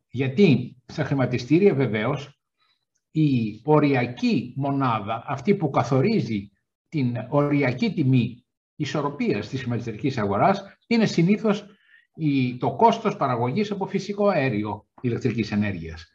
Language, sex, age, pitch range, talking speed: Greek, male, 60-79, 115-180 Hz, 100 wpm